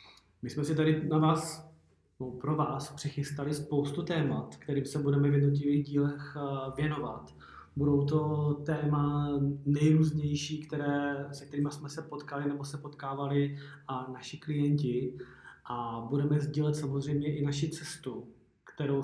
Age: 20-39